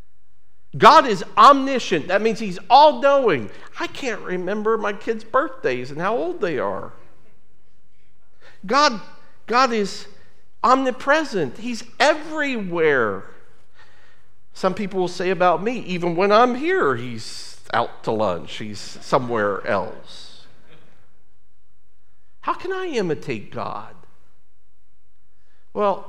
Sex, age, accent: male, 50-69, American